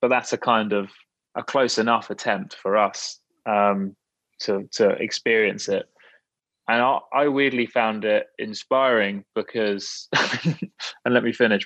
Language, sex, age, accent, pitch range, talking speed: English, male, 20-39, British, 105-125 Hz, 145 wpm